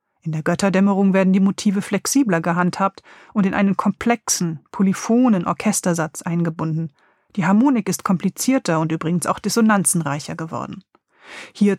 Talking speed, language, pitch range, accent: 125 wpm, German, 175-210 Hz, German